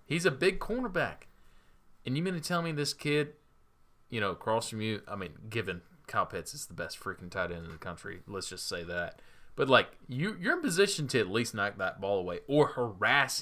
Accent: American